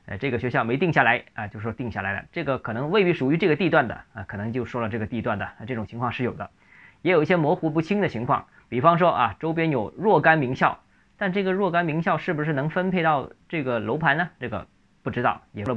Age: 20-39